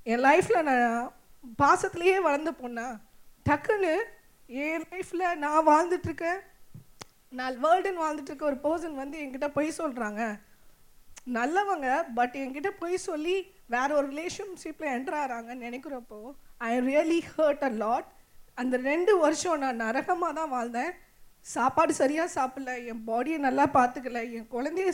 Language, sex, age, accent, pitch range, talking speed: Tamil, female, 20-39, native, 250-330 Hz, 125 wpm